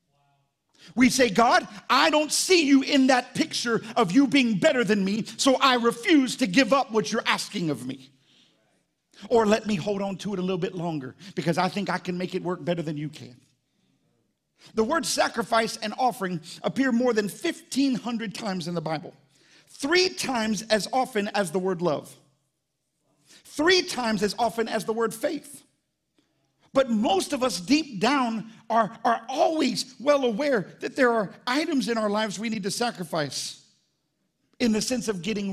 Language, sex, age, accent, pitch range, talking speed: English, male, 50-69, American, 180-250 Hz, 180 wpm